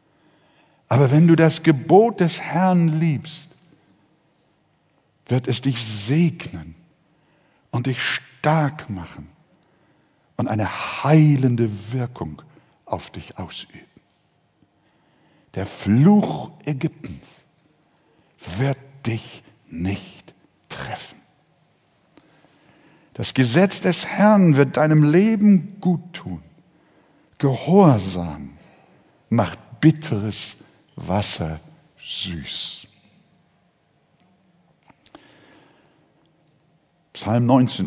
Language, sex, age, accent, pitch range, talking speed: German, male, 60-79, German, 115-180 Hz, 70 wpm